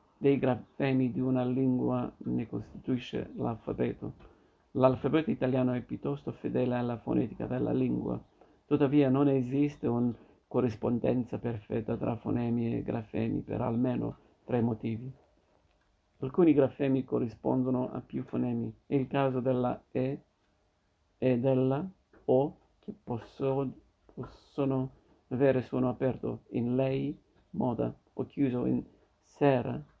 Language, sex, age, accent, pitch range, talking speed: Italian, male, 50-69, native, 110-135 Hz, 115 wpm